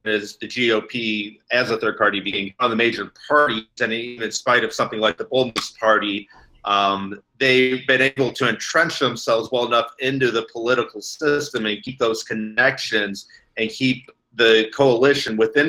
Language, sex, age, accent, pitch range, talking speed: English, male, 40-59, American, 110-125 Hz, 170 wpm